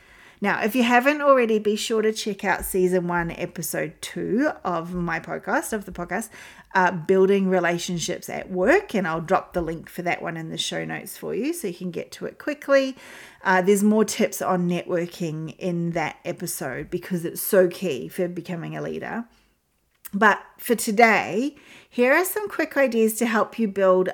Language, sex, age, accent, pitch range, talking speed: English, female, 40-59, Australian, 180-225 Hz, 185 wpm